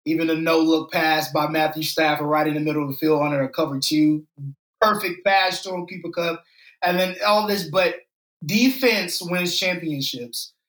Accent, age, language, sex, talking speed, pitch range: American, 20-39, English, male, 175 wpm, 155-200 Hz